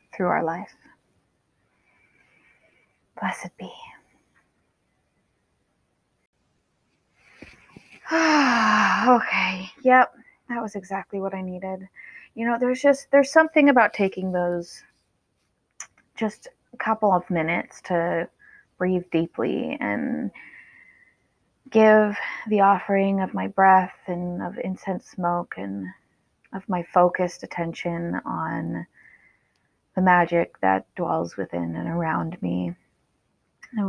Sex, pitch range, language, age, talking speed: female, 175-225 Hz, English, 20-39, 100 wpm